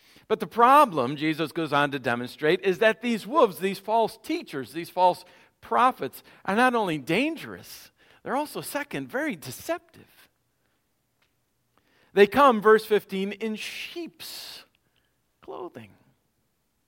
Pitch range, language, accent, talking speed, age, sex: 150-245 Hz, English, American, 120 wpm, 50-69, male